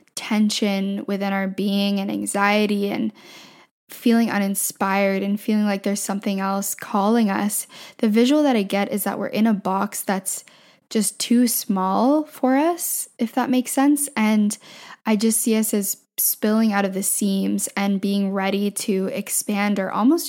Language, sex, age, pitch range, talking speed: English, female, 10-29, 200-230 Hz, 165 wpm